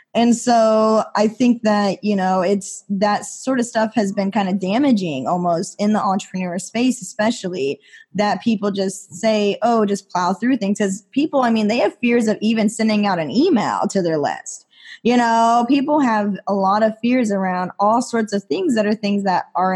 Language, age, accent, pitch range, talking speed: English, 10-29, American, 190-225 Hz, 200 wpm